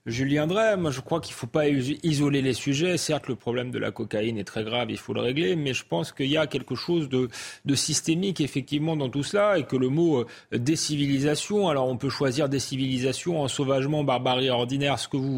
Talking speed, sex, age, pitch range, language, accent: 220 wpm, male, 30-49, 130-165 Hz, French, French